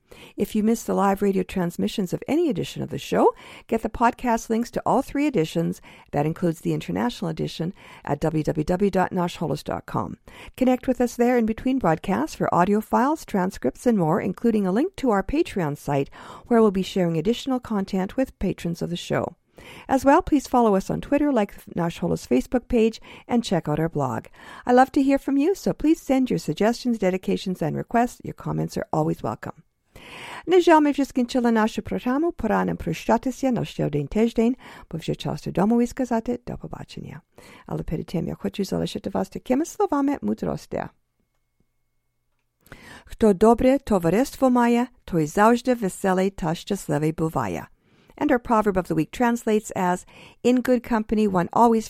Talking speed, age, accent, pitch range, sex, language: 160 wpm, 50-69, American, 175-245 Hz, female, English